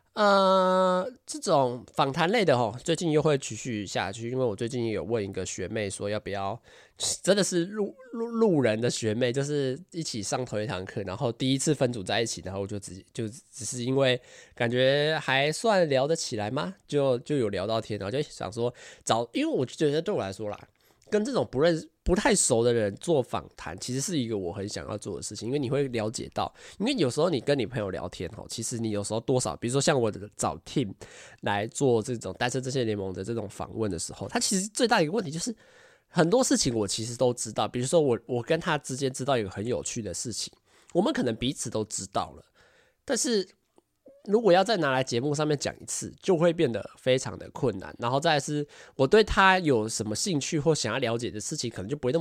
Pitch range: 110-165 Hz